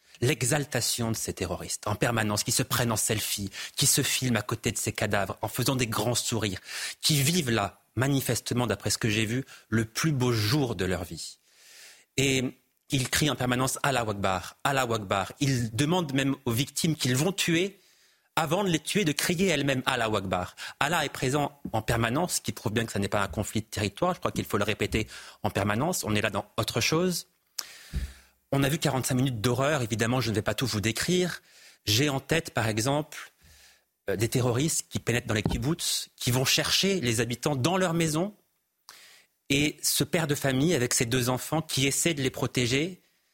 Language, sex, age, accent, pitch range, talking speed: French, male, 30-49, French, 115-150 Hz, 205 wpm